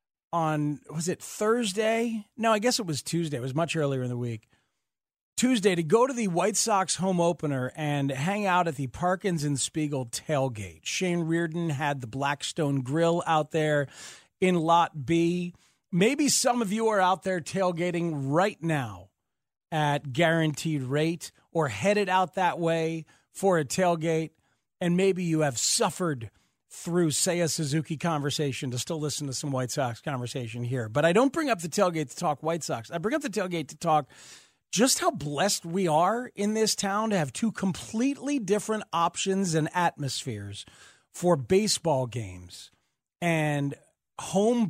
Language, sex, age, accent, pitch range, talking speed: English, male, 40-59, American, 145-190 Hz, 170 wpm